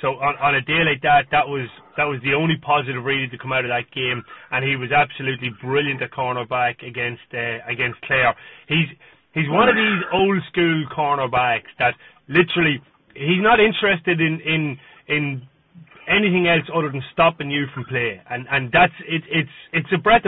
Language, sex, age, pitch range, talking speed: English, male, 30-49, 130-155 Hz, 190 wpm